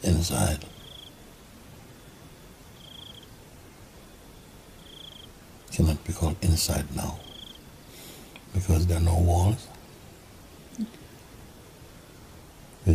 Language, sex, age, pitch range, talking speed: English, male, 60-79, 80-95 Hz, 60 wpm